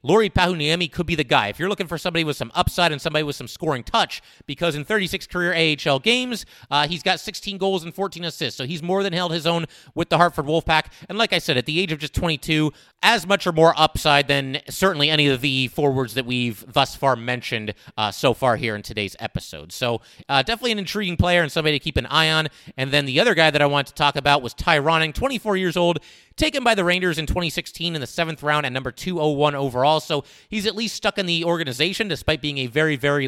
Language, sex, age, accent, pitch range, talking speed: English, male, 30-49, American, 135-175 Hz, 245 wpm